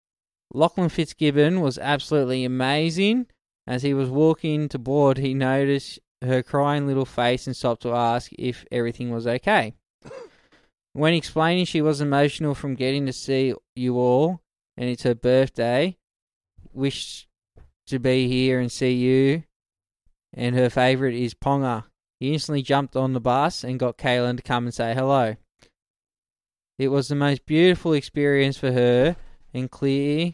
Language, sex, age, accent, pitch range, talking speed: English, male, 20-39, Australian, 125-145 Hz, 150 wpm